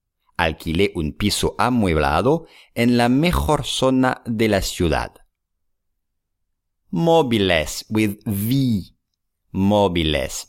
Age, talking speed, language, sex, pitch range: 50-69, 85 wpm, English, male, 85-130 Hz